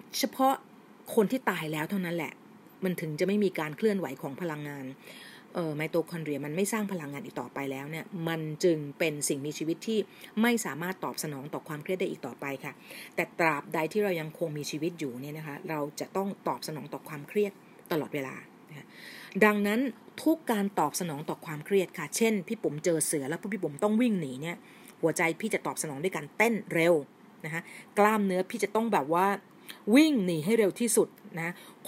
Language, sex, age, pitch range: Thai, female, 30-49, 160-215 Hz